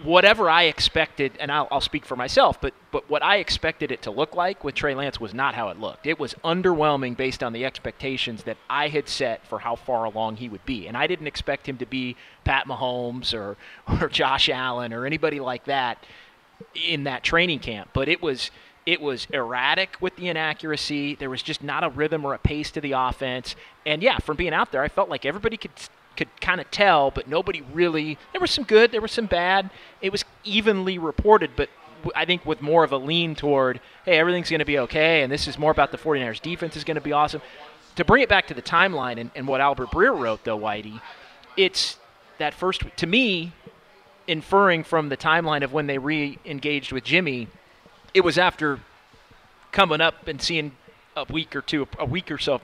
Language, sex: English, male